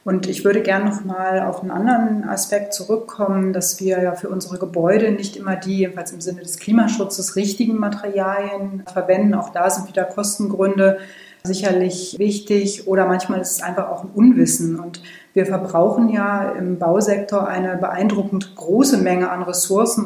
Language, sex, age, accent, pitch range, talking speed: German, female, 30-49, German, 180-205 Hz, 160 wpm